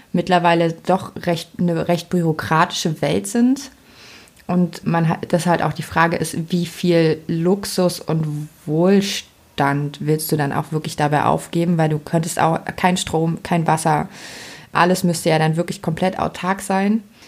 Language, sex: German, female